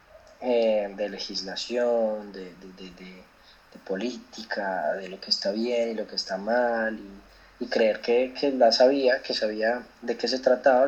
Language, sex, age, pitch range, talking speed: Spanish, male, 20-39, 100-120 Hz, 175 wpm